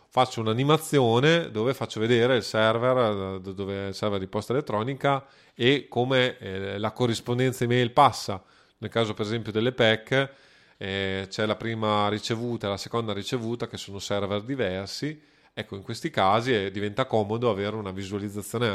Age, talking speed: 30-49, 145 wpm